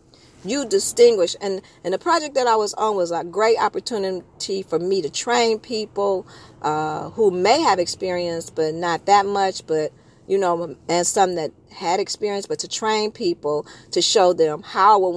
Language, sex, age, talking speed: English, female, 40-59, 180 wpm